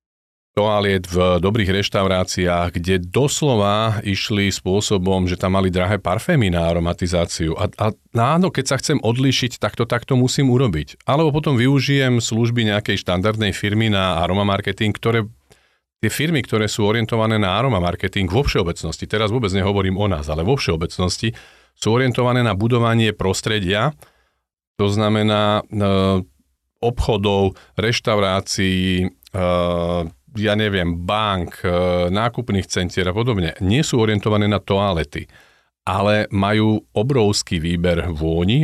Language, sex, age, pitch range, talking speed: Slovak, male, 40-59, 90-110 Hz, 130 wpm